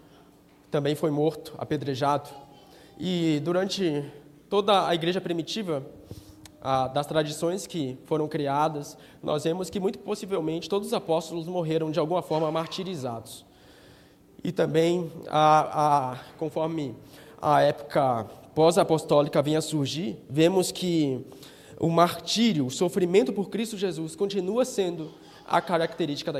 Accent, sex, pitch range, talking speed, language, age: Brazilian, male, 150-190 Hz, 125 wpm, Portuguese, 20-39